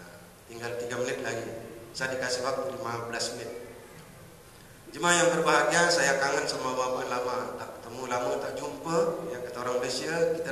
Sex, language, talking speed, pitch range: male, Indonesian, 155 wpm, 150-185 Hz